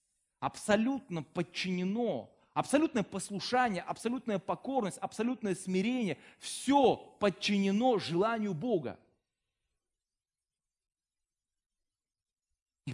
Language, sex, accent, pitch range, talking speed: Russian, male, native, 180-265 Hz, 60 wpm